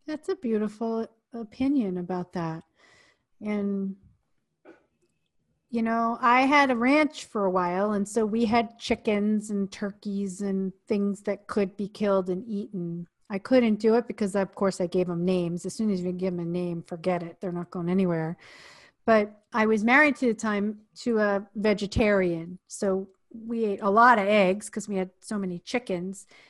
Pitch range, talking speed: 195-245 Hz, 180 wpm